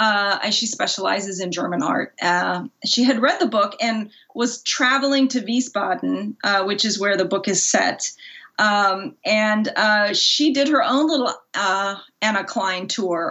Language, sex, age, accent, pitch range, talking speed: English, female, 30-49, American, 195-245 Hz, 165 wpm